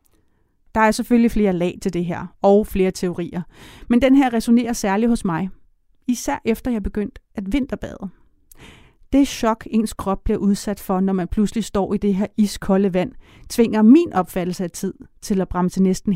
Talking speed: 180 wpm